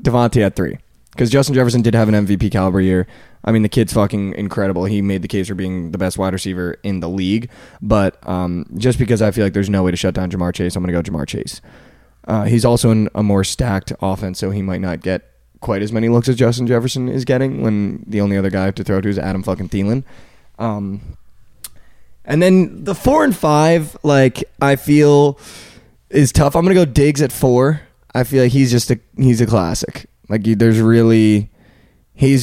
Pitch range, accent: 100-135 Hz, American